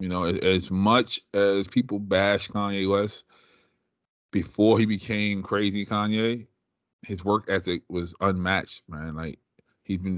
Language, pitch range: English, 90-105 Hz